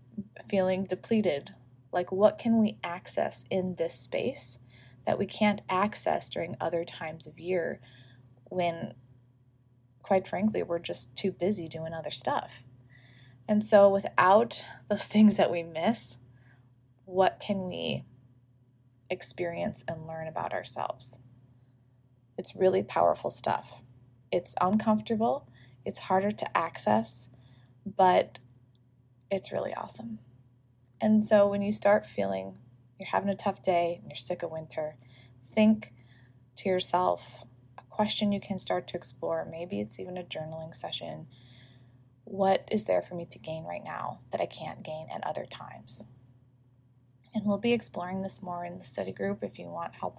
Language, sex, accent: English, female, American